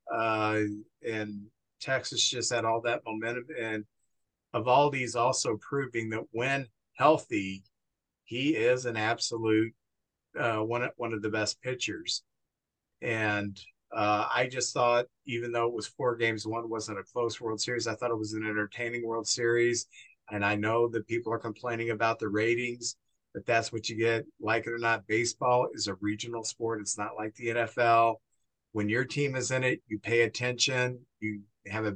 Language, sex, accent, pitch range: English, male, American, 110-125 Hz